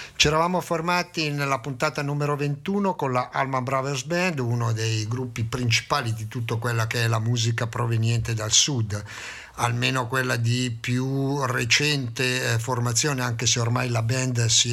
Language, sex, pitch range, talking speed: Italian, male, 120-150 Hz, 155 wpm